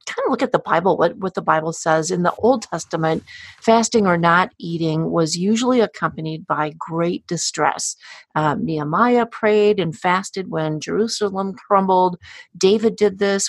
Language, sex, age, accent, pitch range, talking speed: English, female, 40-59, American, 165-210 Hz, 160 wpm